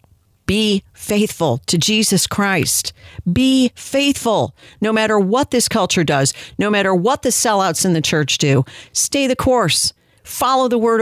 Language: English